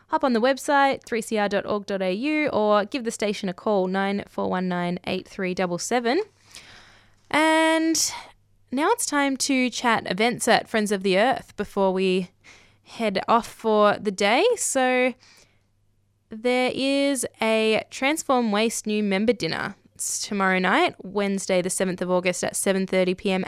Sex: female